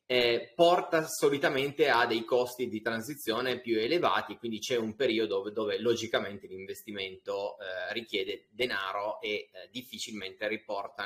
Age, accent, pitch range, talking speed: 20-39, native, 110-145 Hz, 125 wpm